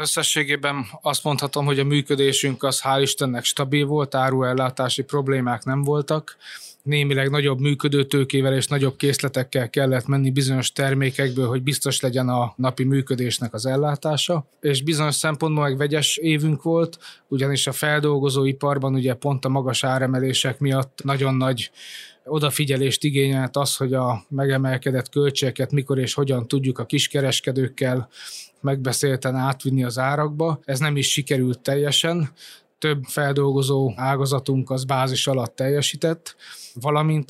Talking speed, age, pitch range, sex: 130 wpm, 20-39, 130-145 Hz, male